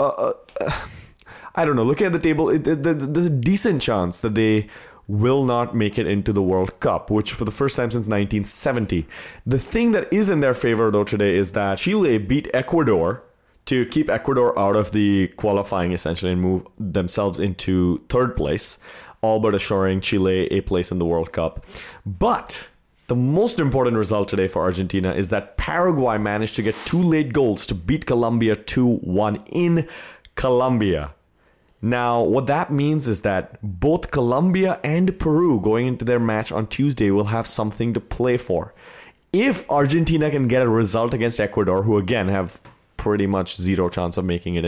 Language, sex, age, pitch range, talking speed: English, male, 30-49, 95-130 Hz, 175 wpm